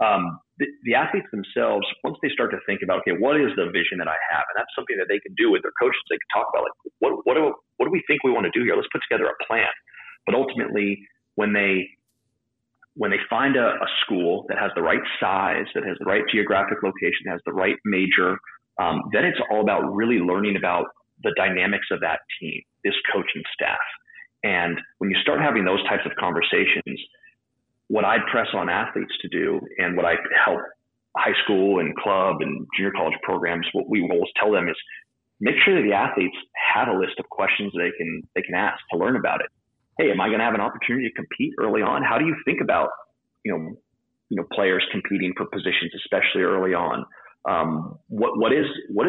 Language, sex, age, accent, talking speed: English, male, 30-49, American, 220 wpm